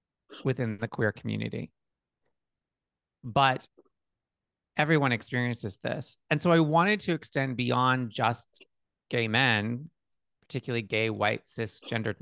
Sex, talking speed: male, 110 wpm